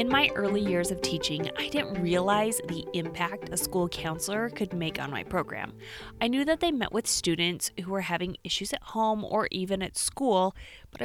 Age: 20-39